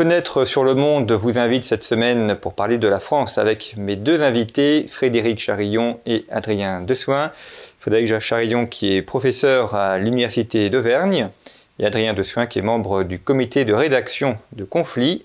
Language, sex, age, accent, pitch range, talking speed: French, male, 40-59, French, 110-140 Hz, 160 wpm